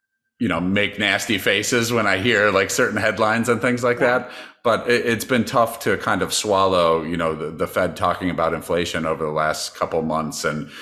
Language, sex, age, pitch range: English, male, 40-59, 80-100 Hz